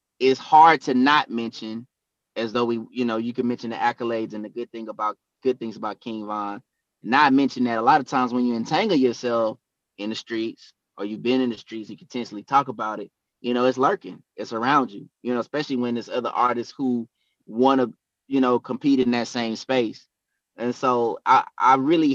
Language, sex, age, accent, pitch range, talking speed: English, male, 20-39, American, 120-140 Hz, 215 wpm